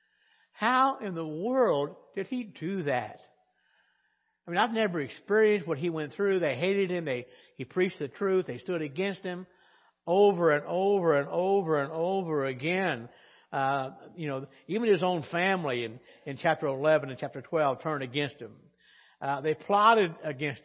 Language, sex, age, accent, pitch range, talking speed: English, male, 60-79, American, 135-195 Hz, 170 wpm